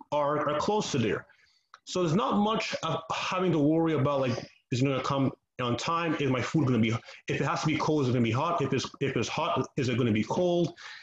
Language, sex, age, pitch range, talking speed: English, male, 30-49, 130-165 Hz, 275 wpm